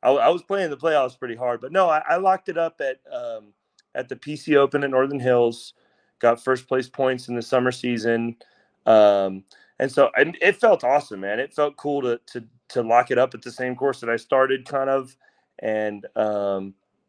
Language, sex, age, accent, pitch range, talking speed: English, male, 30-49, American, 115-145 Hz, 210 wpm